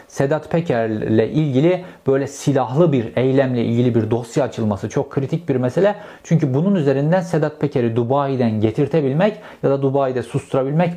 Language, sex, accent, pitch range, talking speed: Turkish, male, native, 120-165 Hz, 140 wpm